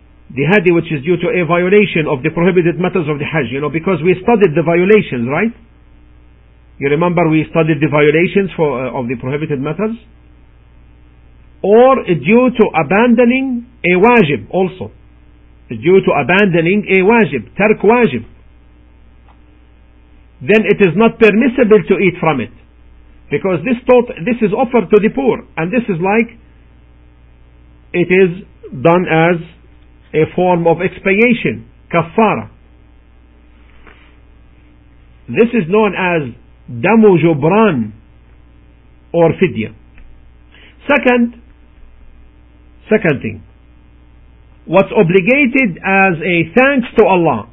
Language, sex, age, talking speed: English, male, 50-69, 125 wpm